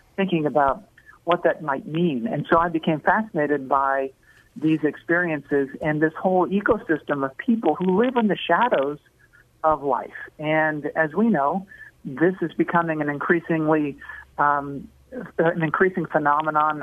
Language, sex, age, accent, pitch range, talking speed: English, male, 50-69, American, 150-175 Hz, 145 wpm